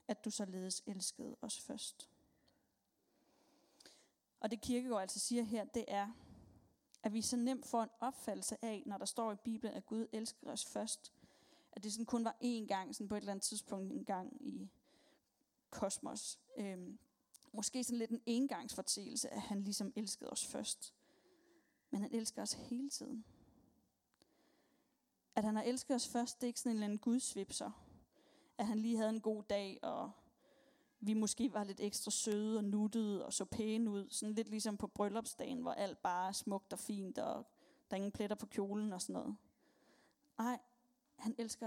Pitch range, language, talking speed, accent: 215-260 Hz, Danish, 185 wpm, native